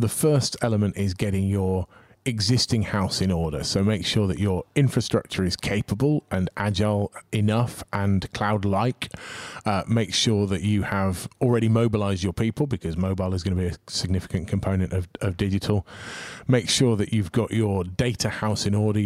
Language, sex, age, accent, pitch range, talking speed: English, male, 30-49, British, 95-115 Hz, 170 wpm